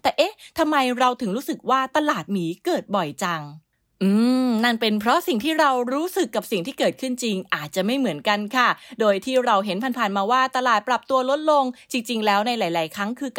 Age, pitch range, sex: 20-39, 185-245 Hz, female